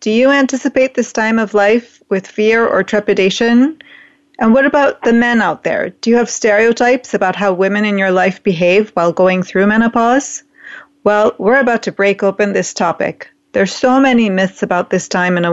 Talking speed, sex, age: 195 wpm, female, 30-49